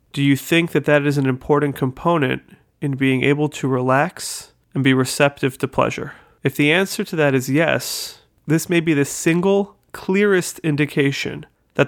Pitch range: 135-150 Hz